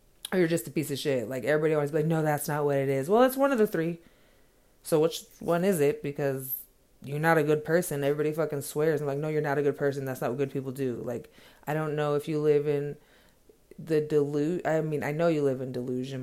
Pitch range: 135-165 Hz